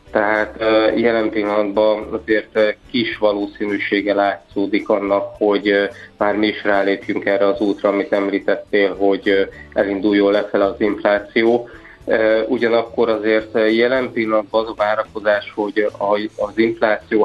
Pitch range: 100-110 Hz